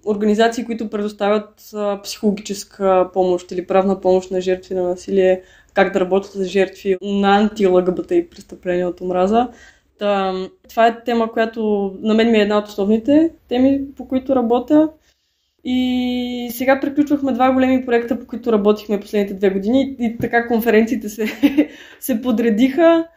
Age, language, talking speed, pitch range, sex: 20-39, Bulgarian, 145 wpm, 195-245 Hz, female